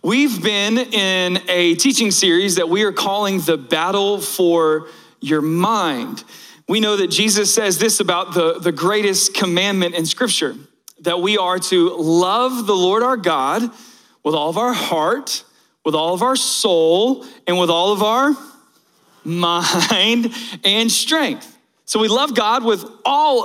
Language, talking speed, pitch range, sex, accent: English, 155 wpm, 185-230 Hz, male, American